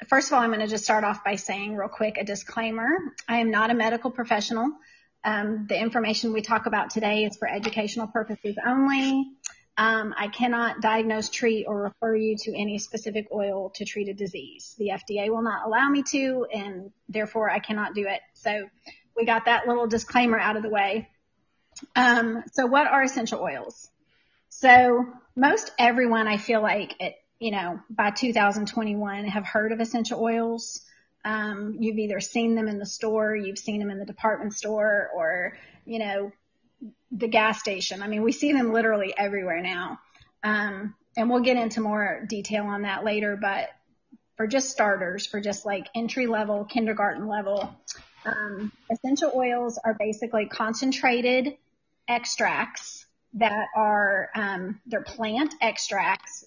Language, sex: English, female